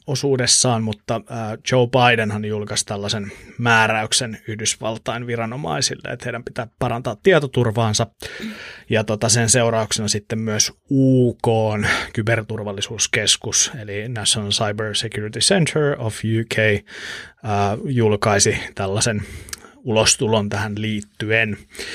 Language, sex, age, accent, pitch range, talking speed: Finnish, male, 30-49, native, 105-125 Hz, 90 wpm